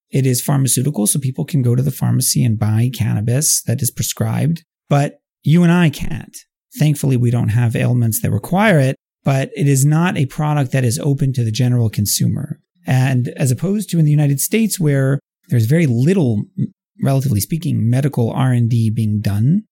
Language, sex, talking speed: English, male, 185 wpm